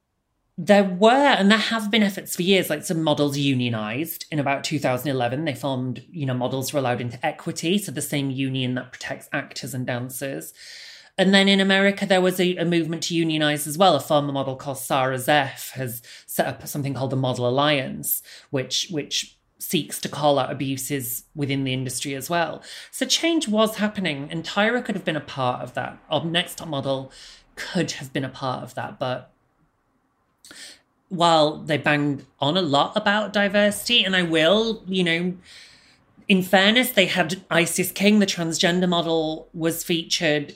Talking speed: 180 wpm